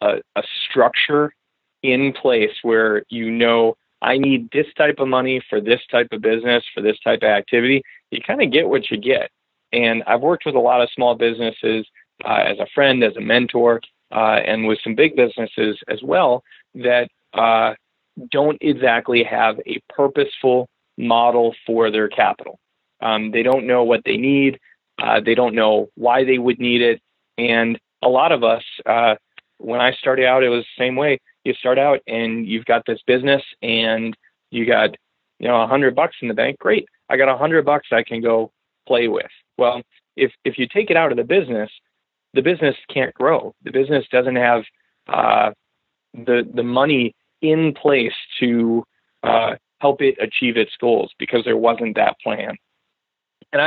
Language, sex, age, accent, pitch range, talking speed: English, male, 30-49, American, 115-135 Hz, 185 wpm